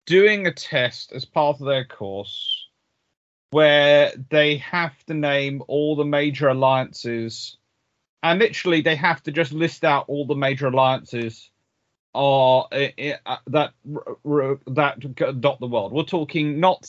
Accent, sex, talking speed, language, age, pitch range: British, male, 130 wpm, English, 40-59, 130-185 Hz